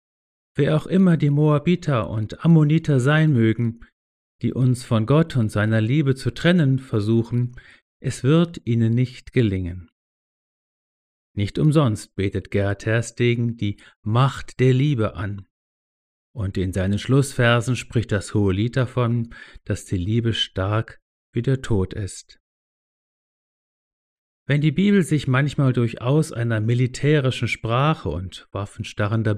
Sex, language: male, German